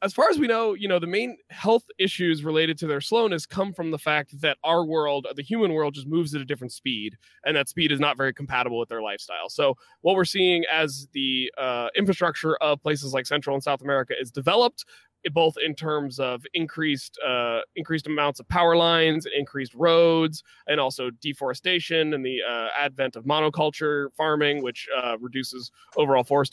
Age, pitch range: 20-39, 130-165 Hz